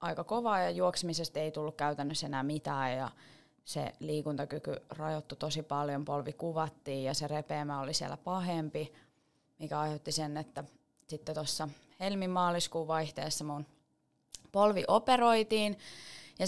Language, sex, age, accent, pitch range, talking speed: Finnish, female, 20-39, native, 145-170 Hz, 125 wpm